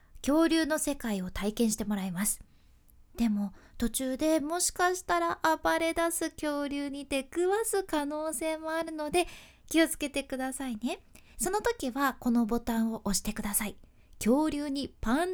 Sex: female